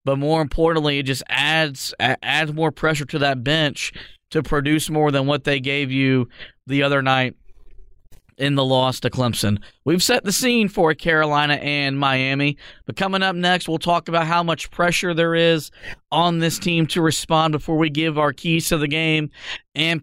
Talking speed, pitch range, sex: 185 wpm, 155-210 Hz, male